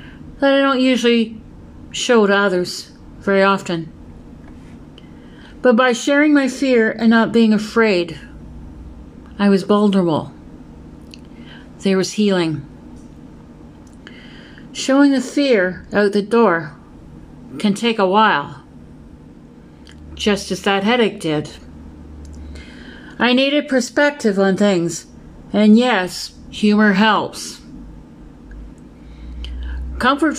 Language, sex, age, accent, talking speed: English, female, 50-69, American, 95 wpm